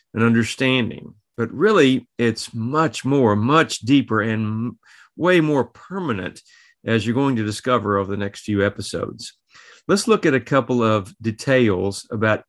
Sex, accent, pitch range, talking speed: male, American, 110-135 Hz, 145 wpm